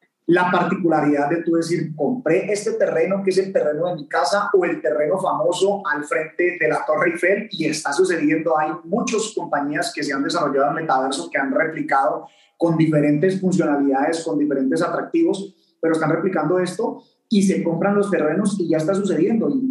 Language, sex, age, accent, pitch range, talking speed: Spanish, male, 30-49, Colombian, 160-200 Hz, 185 wpm